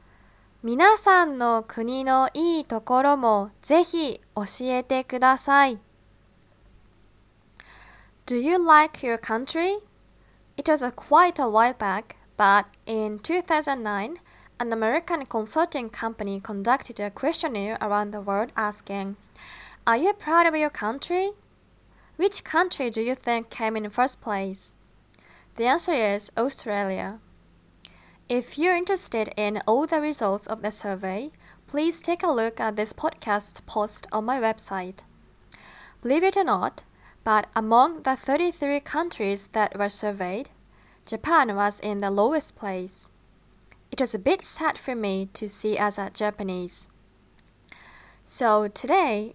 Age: 20-39